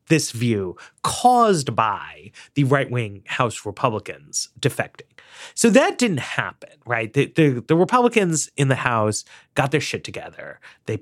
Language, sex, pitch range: English, male, 120-160 Hz